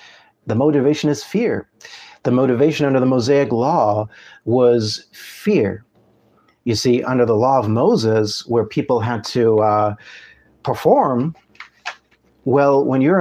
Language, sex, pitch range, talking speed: English, male, 110-130 Hz, 125 wpm